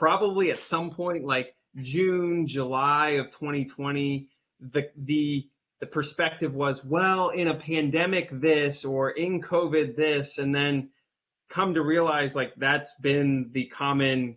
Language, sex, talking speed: English, male, 140 wpm